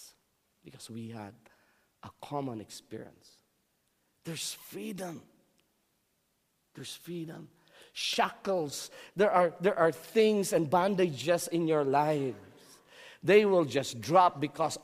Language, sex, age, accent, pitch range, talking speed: English, male, 50-69, Filipino, 140-185 Hz, 105 wpm